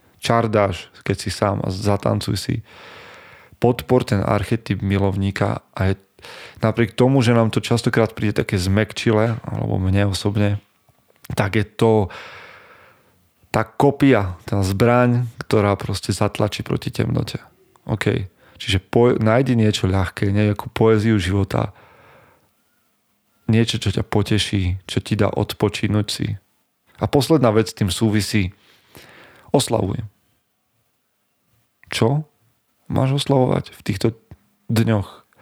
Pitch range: 100-115 Hz